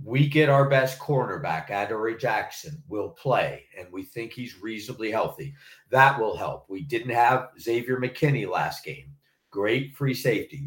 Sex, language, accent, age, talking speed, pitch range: male, English, American, 50-69, 155 wpm, 120-145 Hz